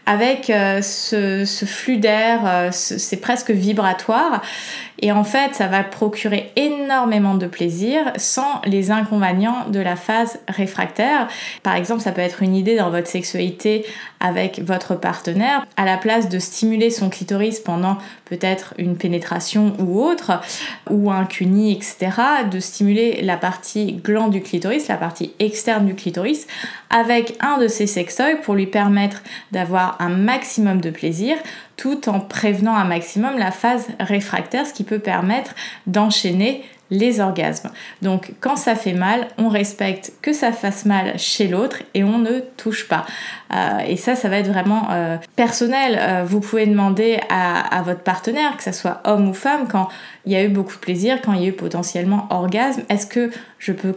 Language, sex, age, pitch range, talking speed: French, female, 20-39, 190-230 Hz, 170 wpm